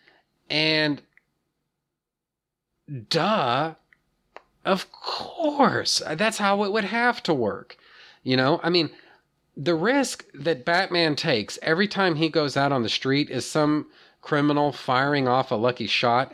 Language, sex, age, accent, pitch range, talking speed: English, male, 40-59, American, 125-170 Hz, 130 wpm